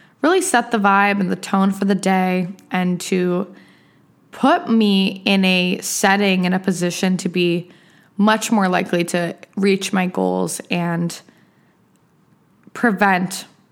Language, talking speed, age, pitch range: English, 135 wpm, 20-39, 180-205 Hz